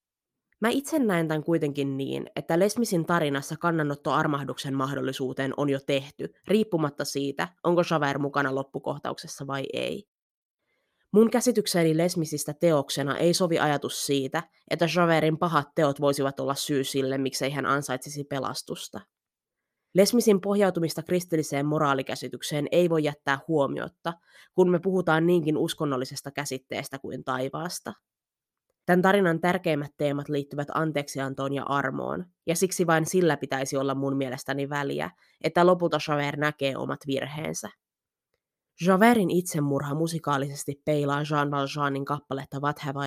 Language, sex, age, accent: Finnish, female, 20-39, native